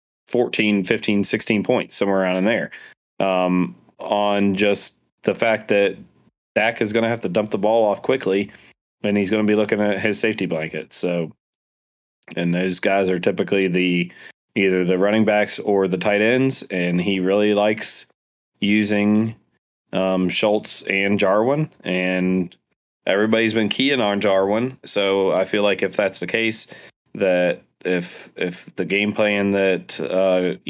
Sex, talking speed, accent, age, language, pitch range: male, 160 wpm, American, 20-39, English, 90-105 Hz